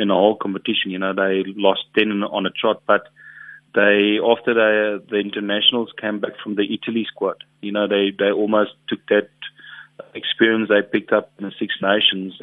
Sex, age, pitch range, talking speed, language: male, 30-49, 95-105 Hz, 195 wpm, English